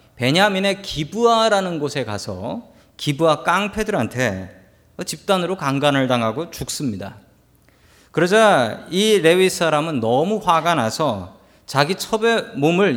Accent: native